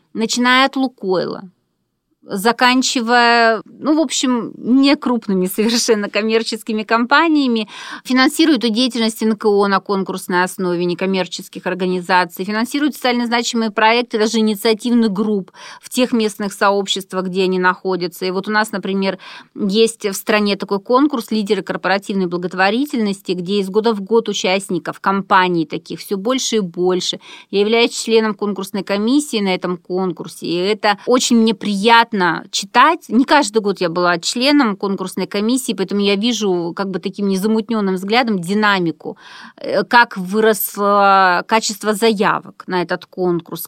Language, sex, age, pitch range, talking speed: Russian, female, 20-39, 195-230 Hz, 135 wpm